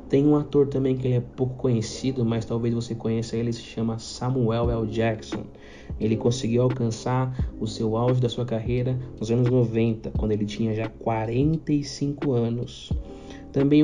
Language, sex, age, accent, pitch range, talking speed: Portuguese, male, 20-39, Brazilian, 110-130 Hz, 165 wpm